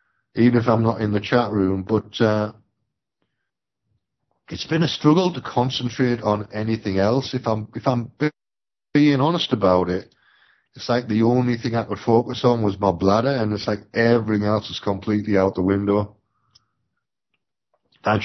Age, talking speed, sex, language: 50-69, 165 wpm, male, English